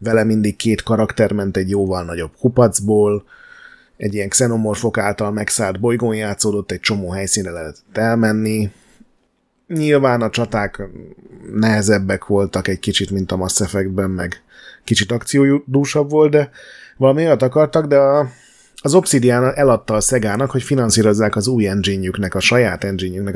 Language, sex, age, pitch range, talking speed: Hungarian, male, 30-49, 100-125 Hz, 140 wpm